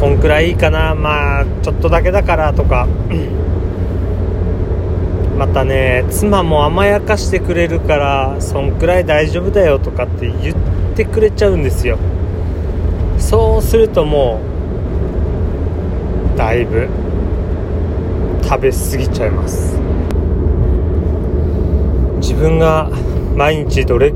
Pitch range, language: 85-95 Hz, Japanese